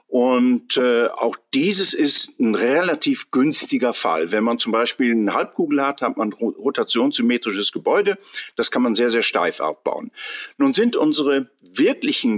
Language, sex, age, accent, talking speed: German, male, 50-69, German, 150 wpm